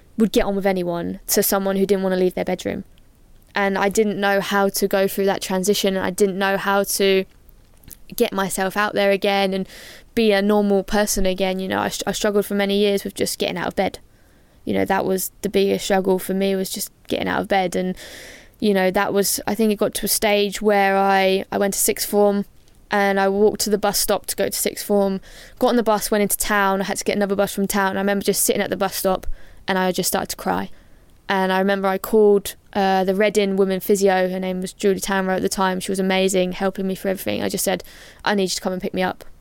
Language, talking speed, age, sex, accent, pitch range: English, 255 wpm, 10-29, female, British, 190-200 Hz